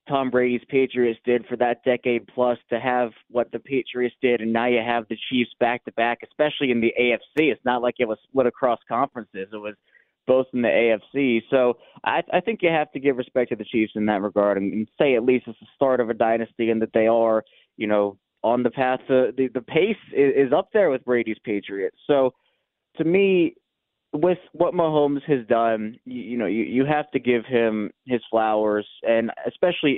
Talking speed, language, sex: 215 wpm, English, male